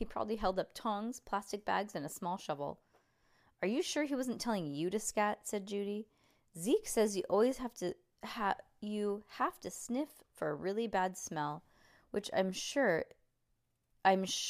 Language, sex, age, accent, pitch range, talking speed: English, female, 20-39, American, 175-255 Hz, 175 wpm